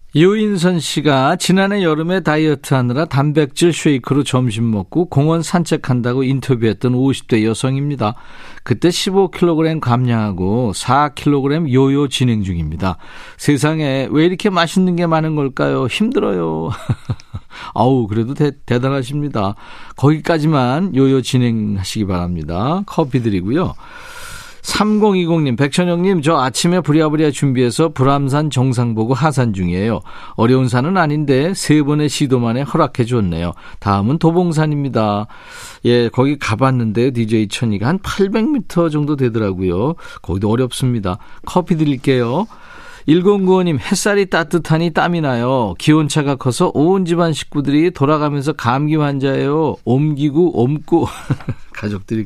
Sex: male